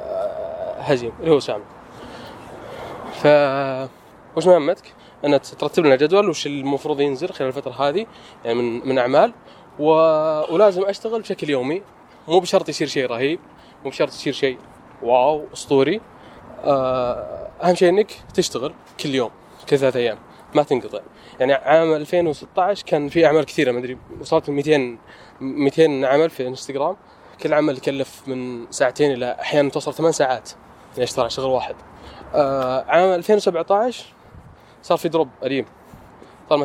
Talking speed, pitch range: 140 wpm, 135-180 Hz